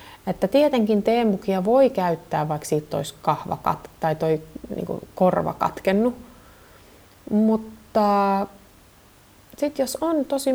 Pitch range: 155-220 Hz